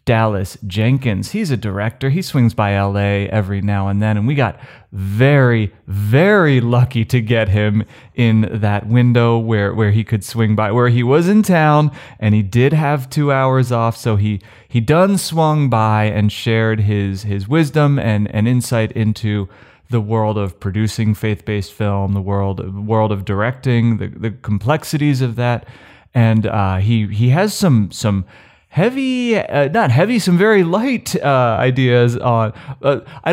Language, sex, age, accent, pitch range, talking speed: English, male, 30-49, American, 110-150 Hz, 170 wpm